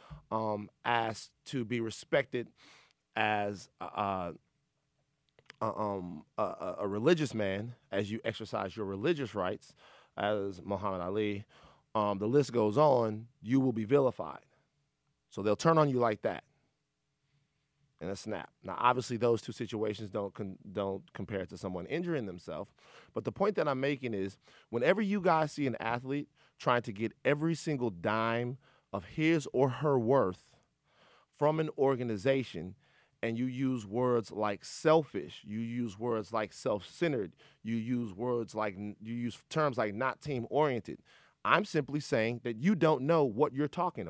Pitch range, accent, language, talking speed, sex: 110-145 Hz, American, English, 155 wpm, male